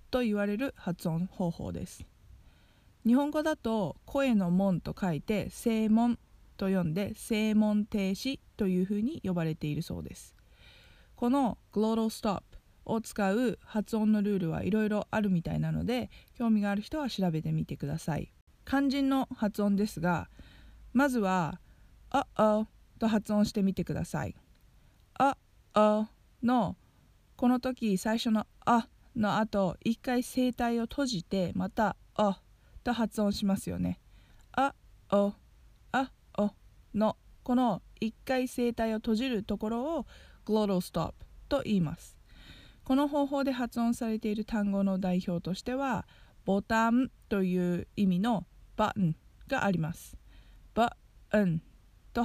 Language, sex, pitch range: Japanese, female, 185-235 Hz